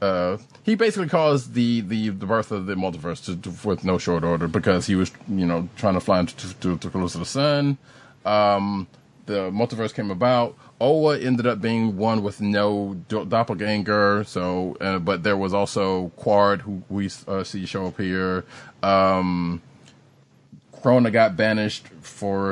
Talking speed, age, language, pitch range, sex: 170 wpm, 30-49, English, 95-115 Hz, male